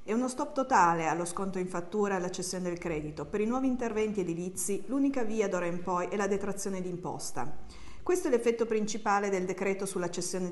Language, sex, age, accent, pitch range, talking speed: Italian, female, 50-69, native, 175-225 Hz, 200 wpm